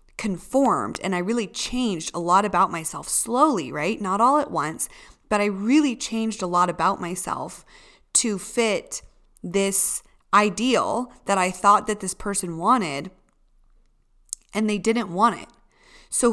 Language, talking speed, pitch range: English, 145 wpm, 175-230 Hz